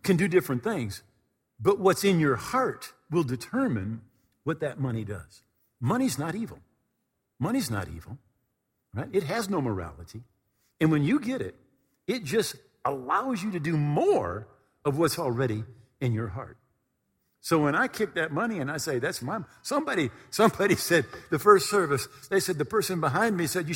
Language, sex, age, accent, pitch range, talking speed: English, male, 50-69, American, 130-215 Hz, 175 wpm